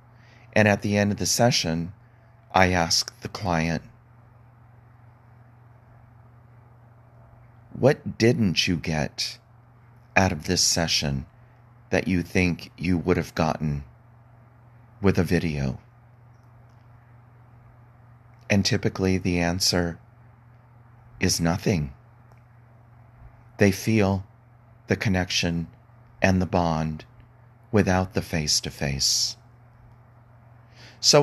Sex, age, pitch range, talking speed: male, 40-59, 95-120 Hz, 90 wpm